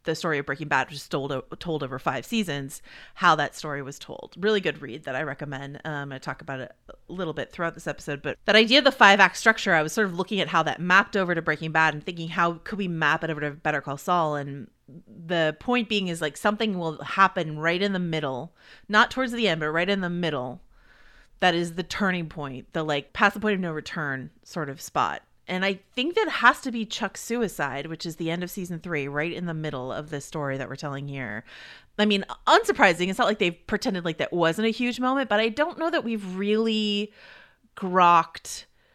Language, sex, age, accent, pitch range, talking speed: English, female, 30-49, American, 155-215 Hz, 235 wpm